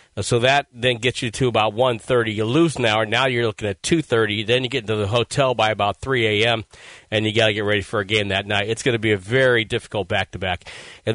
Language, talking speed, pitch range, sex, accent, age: English, 260 wpm, 110-140 Hz, male, American, 50-69